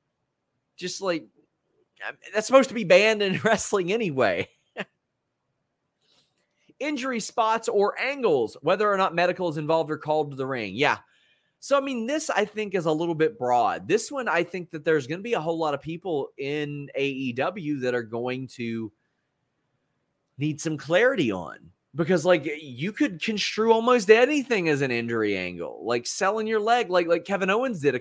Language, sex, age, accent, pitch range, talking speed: English, male, 30-49, American, 145-195 Hz, 175 wpm